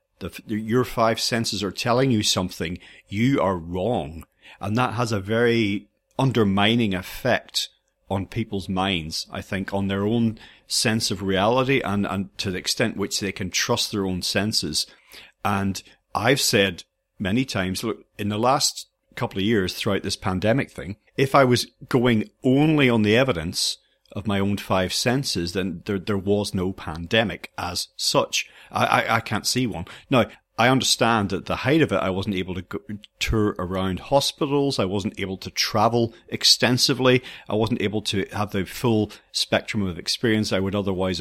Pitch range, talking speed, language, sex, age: 95-115 Hz, 175 wpm, English, male, 40-59